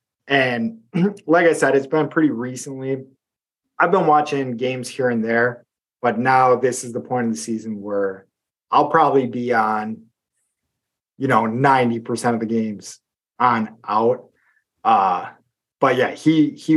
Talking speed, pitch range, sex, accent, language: 150 wpm, 115-145 Hz, male, American, English